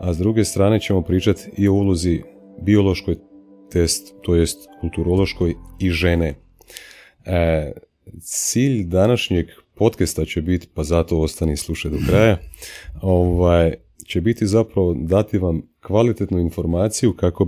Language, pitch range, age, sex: Croatian, 80-95 Hz, 30-49, male